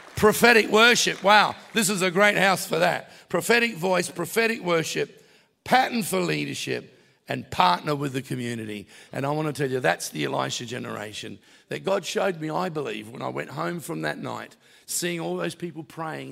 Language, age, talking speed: English, 50-69, 185 wpm